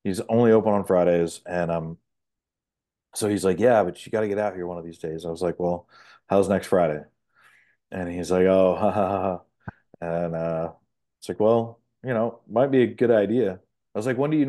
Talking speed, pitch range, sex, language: 220 wpm, 85-110 Hz, male, English